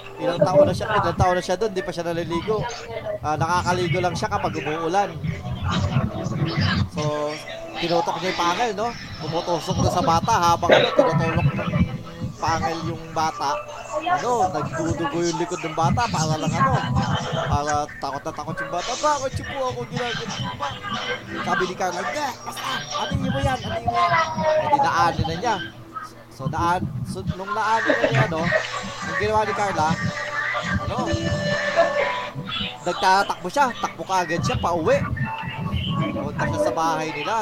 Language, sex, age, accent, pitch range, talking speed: Filipino, male, 20-39, native, 155-215 Hz, 150 wpm